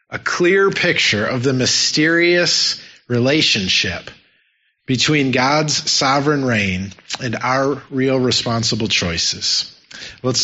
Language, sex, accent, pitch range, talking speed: English, male, American, 125-170 Hz, 100 wpm